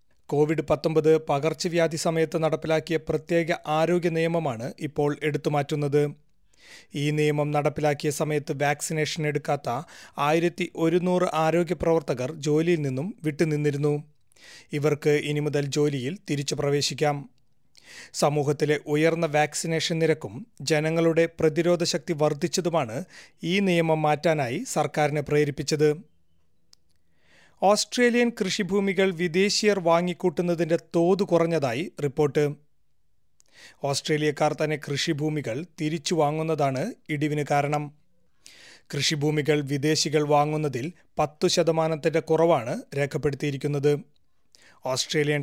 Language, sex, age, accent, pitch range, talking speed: Malayalam, male, 30-49, native, 145-165 Hz, 85 wpm